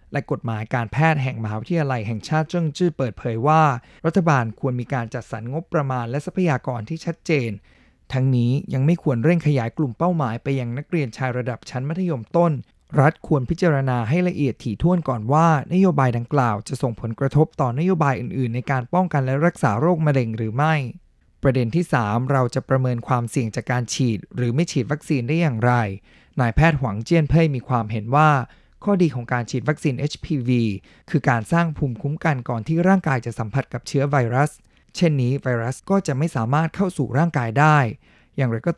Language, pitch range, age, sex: Chinese, 120-160 Hz, 20-39, male